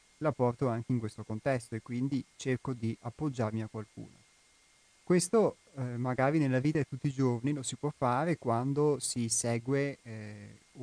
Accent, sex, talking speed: native, male, 165 wpm